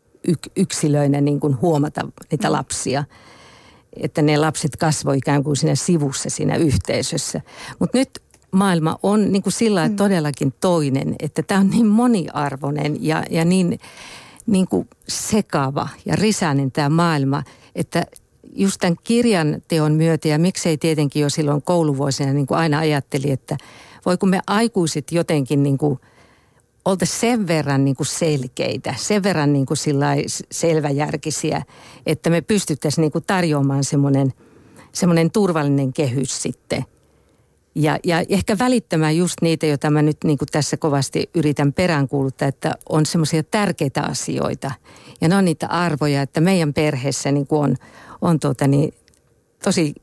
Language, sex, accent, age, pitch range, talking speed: Finnish, female, native, 50-69, 145-175 Hz, 135 wpm